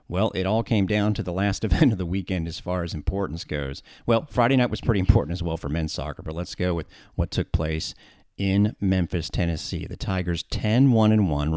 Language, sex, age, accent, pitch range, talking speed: English, male, 40-59, American, 85-110 Hz, 215 wpm